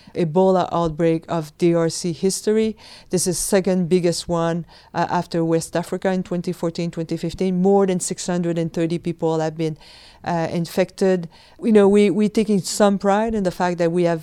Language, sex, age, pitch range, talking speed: English, female, 40-59, 160-185 Hz, 155 wpm